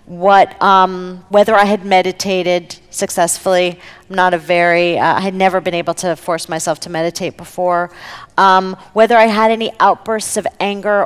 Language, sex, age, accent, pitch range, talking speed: English, female, 40-59, American, 180-230 Hz, 165 wpm